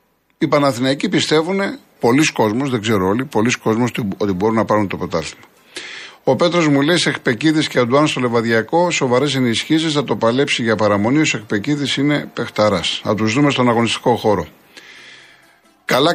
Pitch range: 110-145 Hz